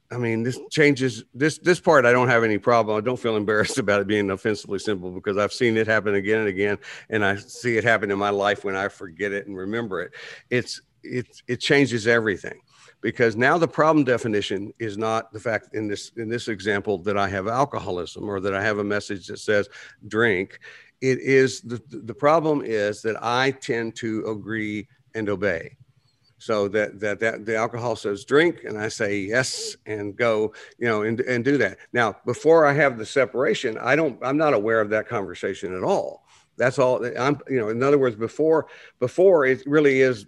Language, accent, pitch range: English, American, 105-130 Hz